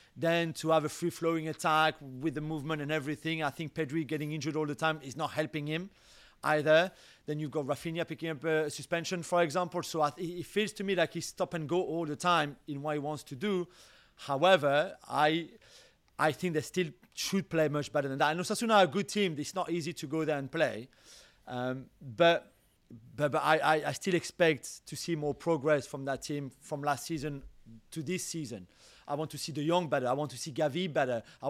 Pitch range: 145-175 Hz